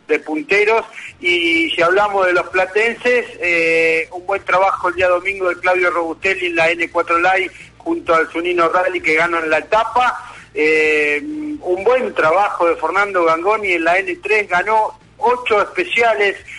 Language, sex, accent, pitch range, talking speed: Spanish, male, Argentinian, 165-195 Hz, 160 wpm